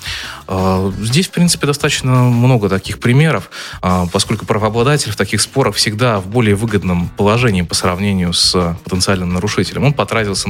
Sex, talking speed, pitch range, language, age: male, 135 wpm, 90-115 Hz, Russian, 20-39